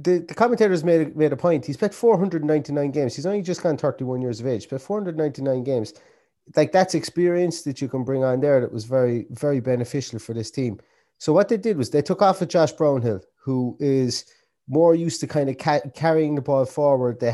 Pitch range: 120-155 Hz